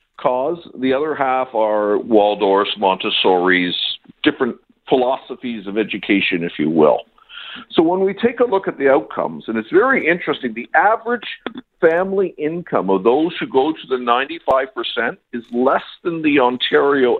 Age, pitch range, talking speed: 50-69, 110-175 Hz, 150 wpm